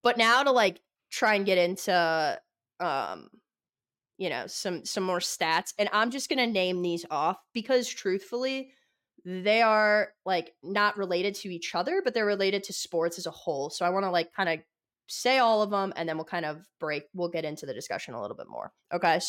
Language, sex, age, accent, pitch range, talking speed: English, female, 20-39, American, 165-205 Hz, 215 wpm